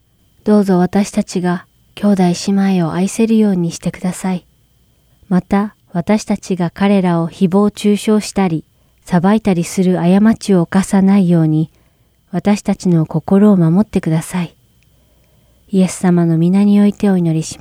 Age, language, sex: 40-59, Japanese, female